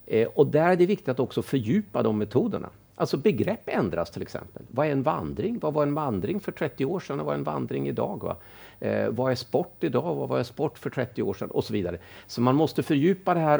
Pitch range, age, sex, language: 100-135 Hz, 50-69, male, Swedish